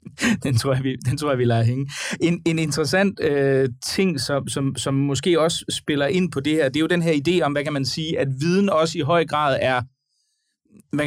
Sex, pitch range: male, 125-155 Hz